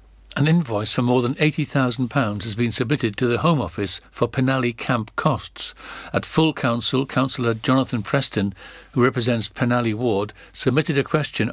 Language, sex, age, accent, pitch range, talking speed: English, male, 60-79, British, 110-140 Hz, 155 wpm